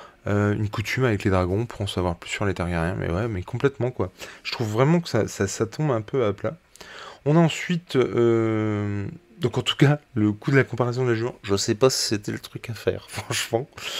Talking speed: 235 wpm